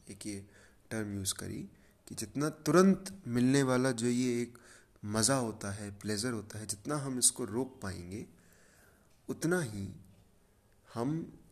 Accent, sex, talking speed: native, male, 140 wpm